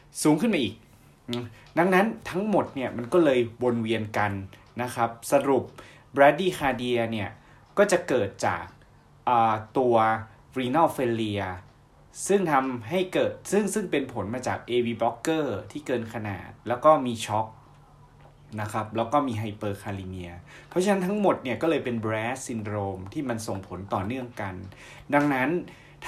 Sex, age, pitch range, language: male, 20-39, 110-140 Hz, Thai